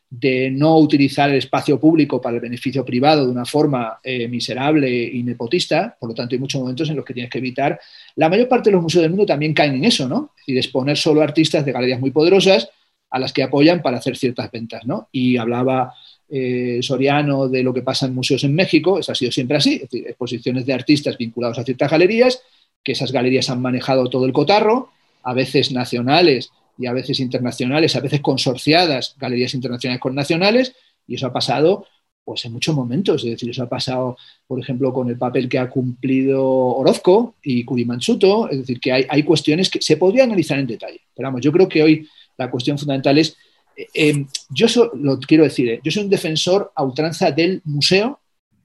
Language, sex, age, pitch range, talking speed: Spanish, male, 40-59, 130-160 Hz, 205 wpm